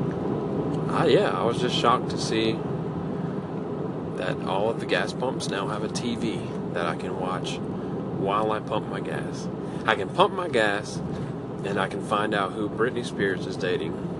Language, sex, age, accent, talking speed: English, male, 30-49, American, 175 wpm